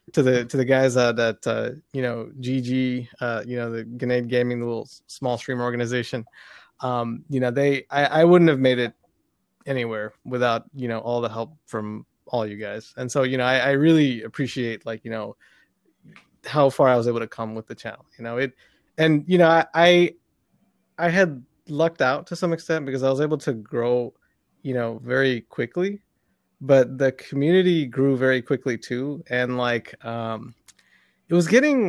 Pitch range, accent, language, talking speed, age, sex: 120-150 Hz, American, English, 190 wpm, 20-39, male